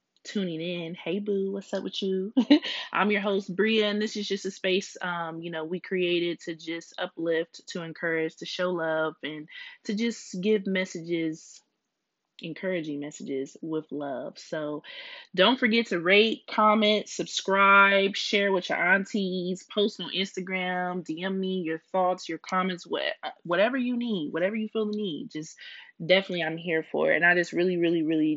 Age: 20-39